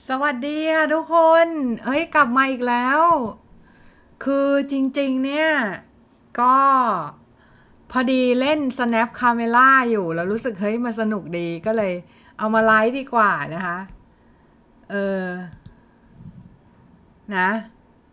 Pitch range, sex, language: 205-270 Hz, female, Thai